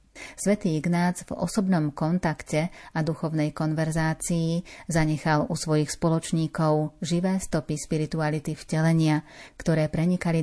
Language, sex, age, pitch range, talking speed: Slovak, female, 30-49, 155-170 Hz, 105 wpm